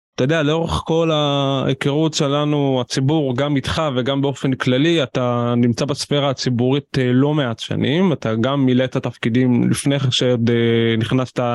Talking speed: 140 wpm